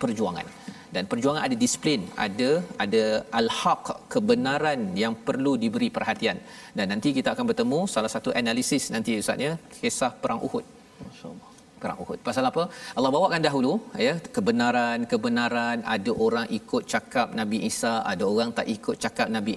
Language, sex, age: Malayalam, male, 40-59